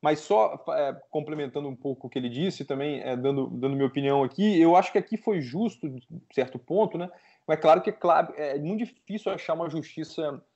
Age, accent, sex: 20-39, Brazilian, male